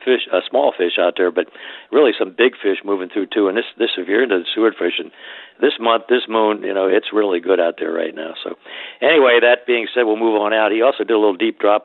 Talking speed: 270 wpm